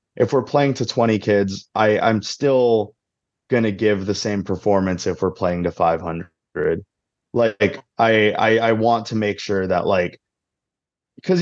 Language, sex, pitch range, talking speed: English, male, 100-125 Hz, 165 wpm